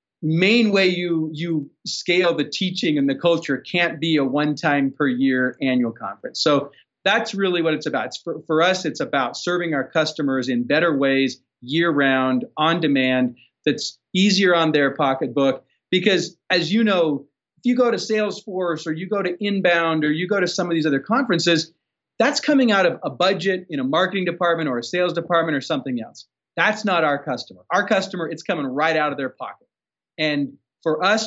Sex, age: male, 40-59